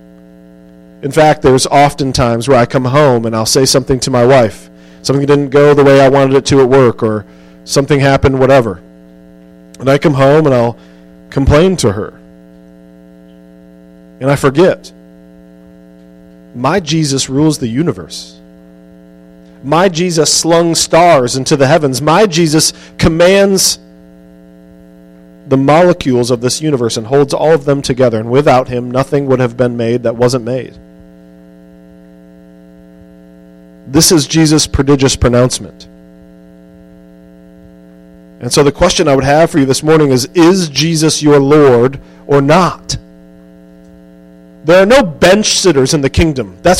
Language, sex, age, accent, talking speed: English, male, 40-59, American, 145 wpm